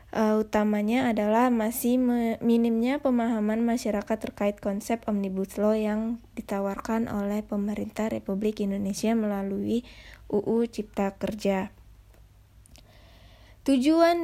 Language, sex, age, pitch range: Indonesian, female, 20-39, 210-235 Hz